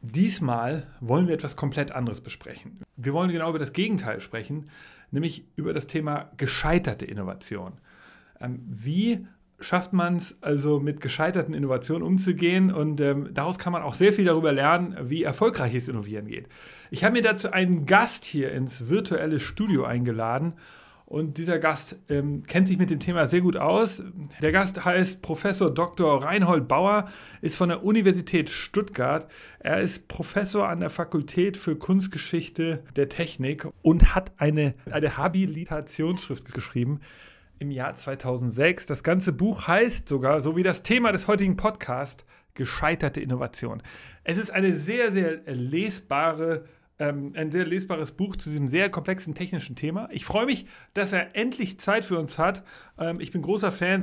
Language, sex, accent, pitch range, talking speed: German, male, German, 145-190 Hz, 155 wpm